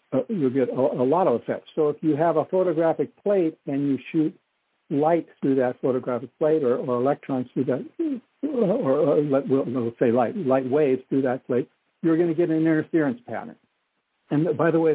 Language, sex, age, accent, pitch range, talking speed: English, male, 60-79, American, 130-175 Hz, 205 wpm